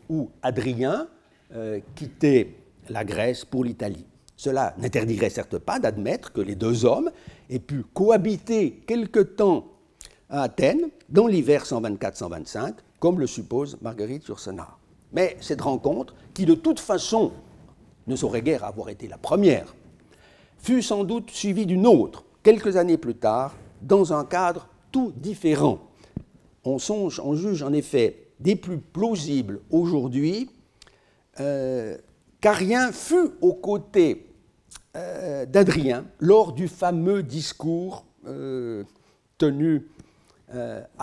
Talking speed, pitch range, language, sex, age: 125 wpm, 130-210 Hz, French, male, 60-79